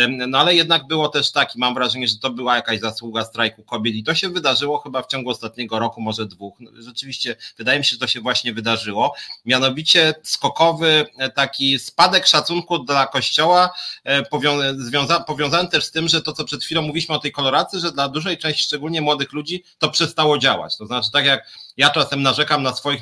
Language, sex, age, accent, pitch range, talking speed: Polish, male, 30-49, native, 125-165 Hz, 195 wpm